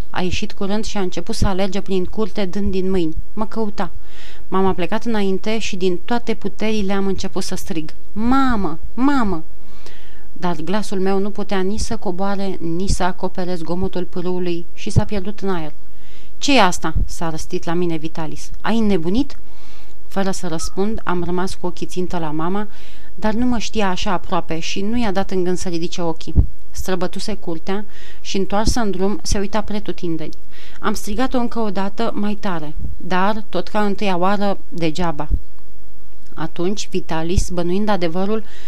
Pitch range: 175-205 Hz